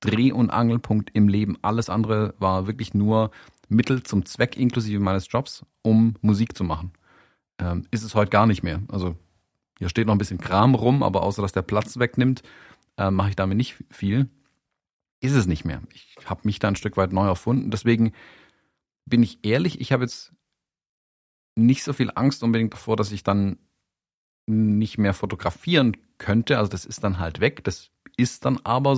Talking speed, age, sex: 185 wpm, 40-59, male